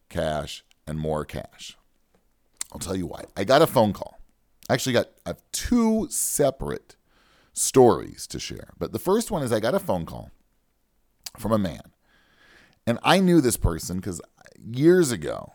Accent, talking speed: American, 160 wpm